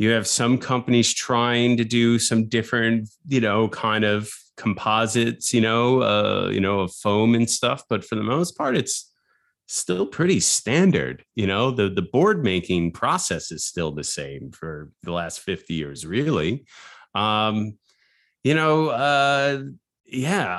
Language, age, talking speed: English, 30-49, 155 wpm